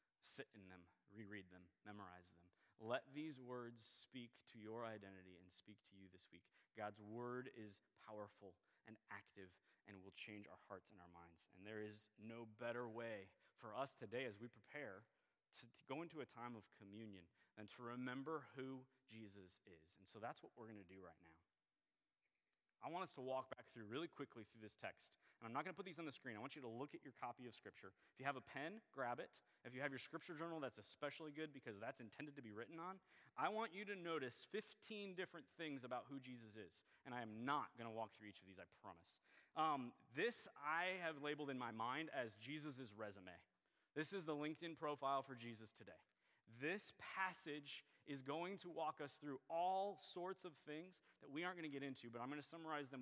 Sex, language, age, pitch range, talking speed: male, English, 30-49, 105-150 Hz, 220 wpm